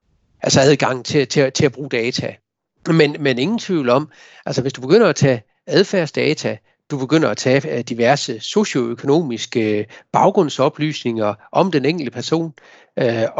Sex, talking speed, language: male, 145 wpm, Danish